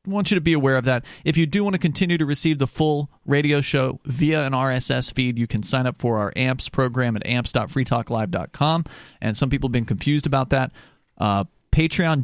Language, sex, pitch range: English, male, 115-150 Hz